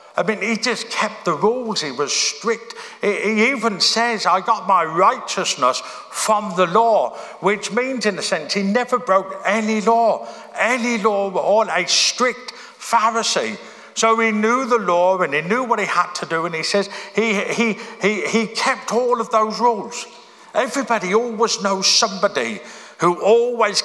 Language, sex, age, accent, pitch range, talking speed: English, male, 50-69, British, 185-230 Hz, 170 wpm